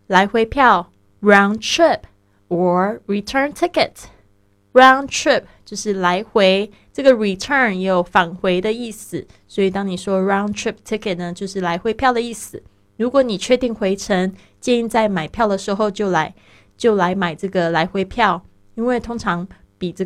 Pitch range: 175-215 Hz